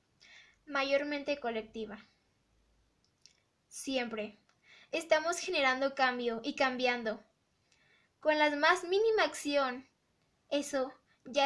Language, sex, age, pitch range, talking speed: Spanish, female, 10-29, 240-280 Hz, 80 wpm